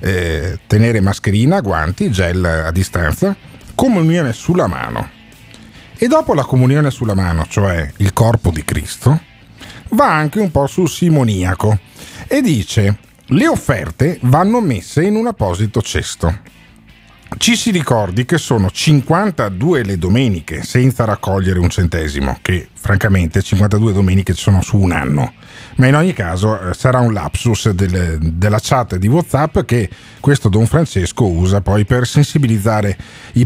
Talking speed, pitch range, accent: 140 wpm, 95-150 Hz, native